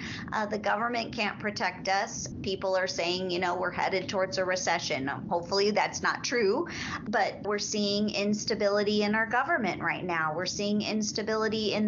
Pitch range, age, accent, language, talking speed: 180-210 Hz, 30-49, American, English, 165 wpm